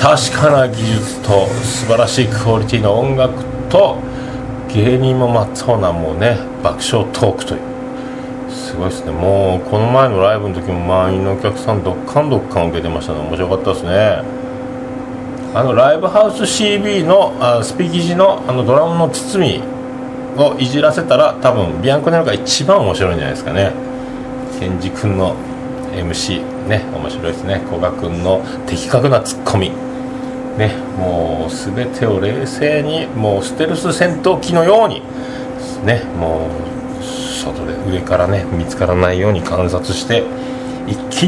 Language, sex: Japanese, male